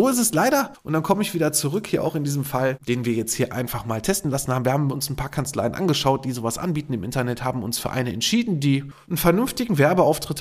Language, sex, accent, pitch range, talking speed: German, male, German, 125-165 Hz, 255 wpm